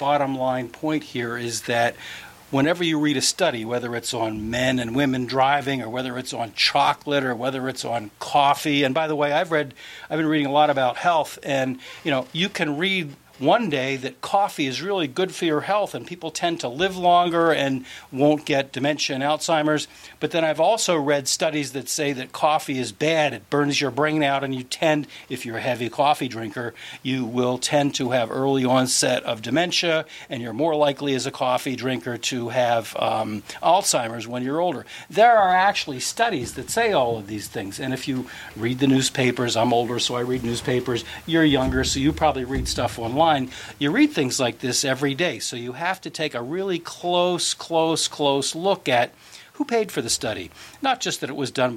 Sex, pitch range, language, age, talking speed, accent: male, 125-155 Hz, English, 50-69, 205 wpm, American